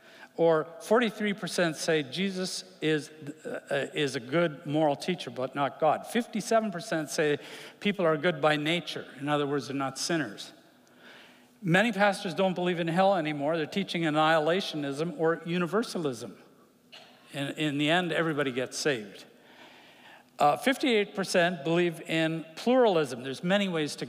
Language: English